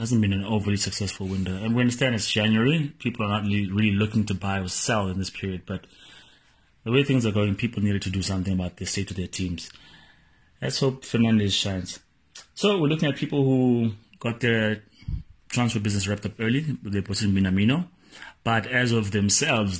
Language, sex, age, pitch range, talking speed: English, male, 30-49, 100-125 Hz, 200 wpm